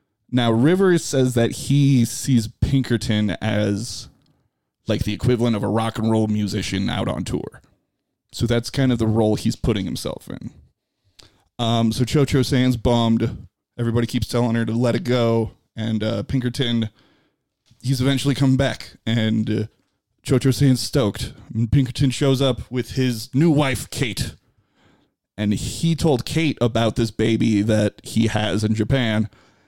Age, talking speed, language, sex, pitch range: 20-39, 150 wpm, English, male, 110-130 Hz